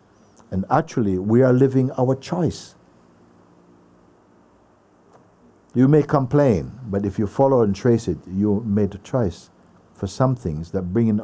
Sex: male